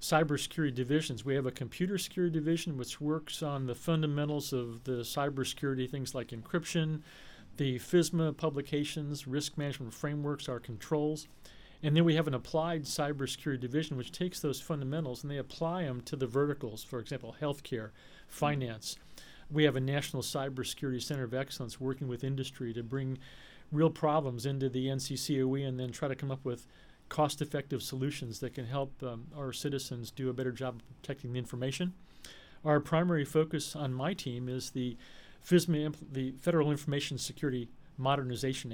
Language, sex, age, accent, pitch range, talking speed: English, male, 40-59, American, 125-150 Hz, 165 wpm